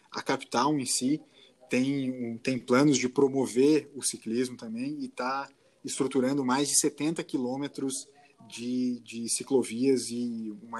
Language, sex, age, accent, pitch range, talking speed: Portuguese, male, 20-39, Brazilian, 115-140 Hz, 135 wpm